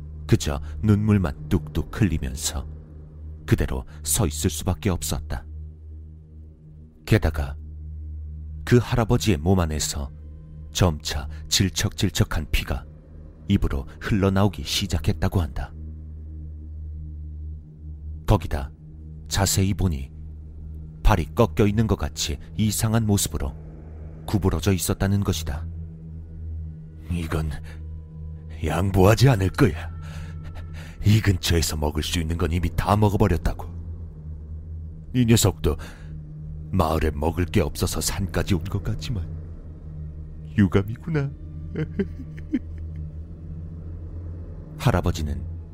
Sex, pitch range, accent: male, 75-95 Hz, native